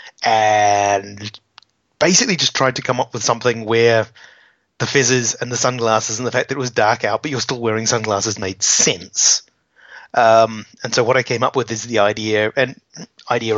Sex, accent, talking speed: male, British, 190 wpm